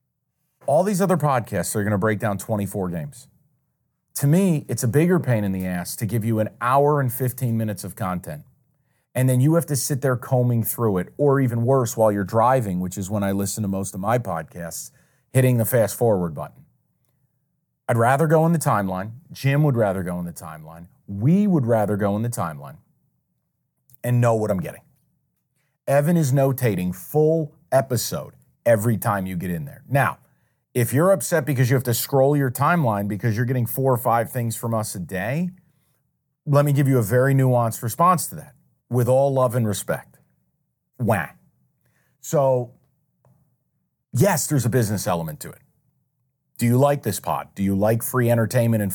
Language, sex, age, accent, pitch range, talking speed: English, male, 30-49, American, 110-145 Hz, 190 wpm